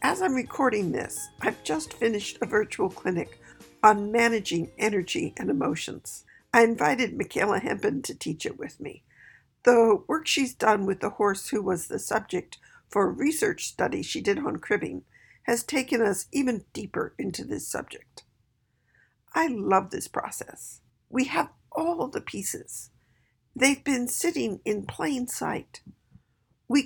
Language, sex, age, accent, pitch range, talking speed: English, female, 50-69, American, 205-280 Hz, 150 wpm